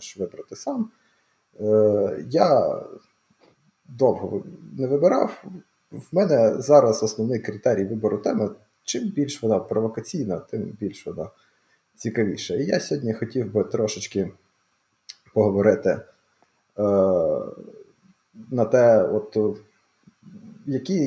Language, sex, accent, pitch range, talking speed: Ukrainian, male, native, 100-130 Hz, 100 wpm